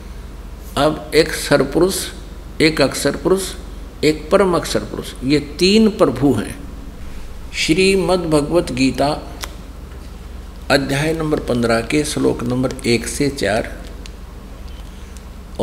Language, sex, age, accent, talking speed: Hindi, male, 60-79, native, 100 wpm